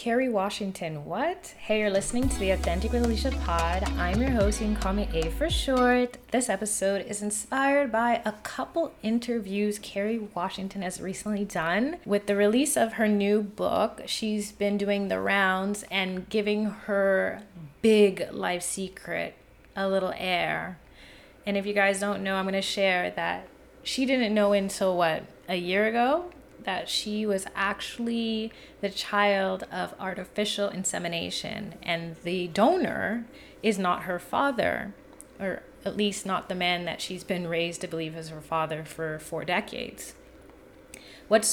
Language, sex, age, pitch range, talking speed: English, female, 20-39, 165-210 Hz, 160 wpm